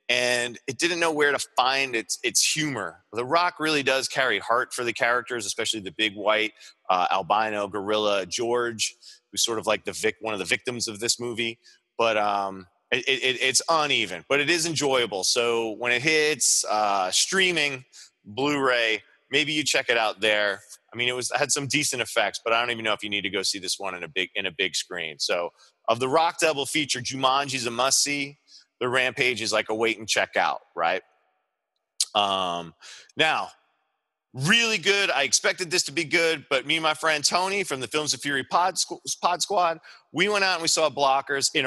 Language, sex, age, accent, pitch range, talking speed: English, male, 30-49, American, 115-165 Hz, 205 wpm